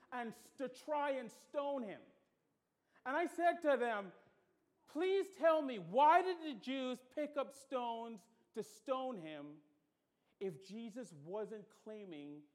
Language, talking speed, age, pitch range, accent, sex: English, 135 wpm, 40-59, 215-330 Hz, American, male